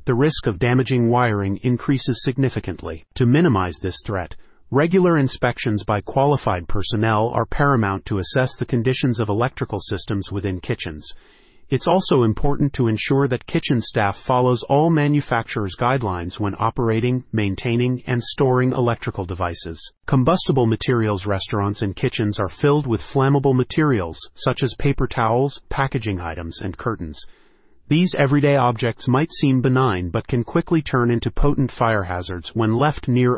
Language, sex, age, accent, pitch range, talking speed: English, male, 40-59, American, 105-135 Hz, 145 wpm